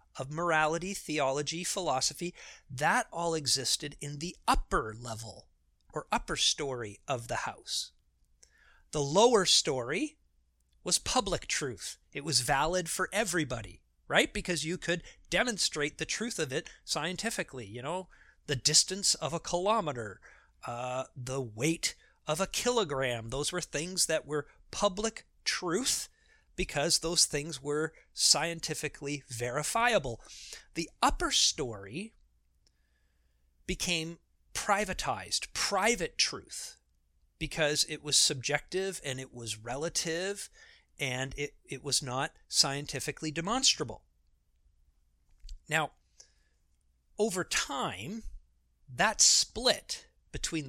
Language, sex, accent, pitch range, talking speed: English, male, American, 120-170 Hz, 110 wpm